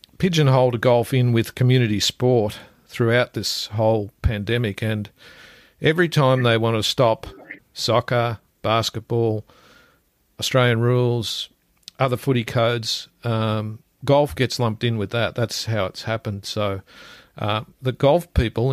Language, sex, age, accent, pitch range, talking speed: English, male, 50-69, Australian, 110-130 Hz, 130 wpm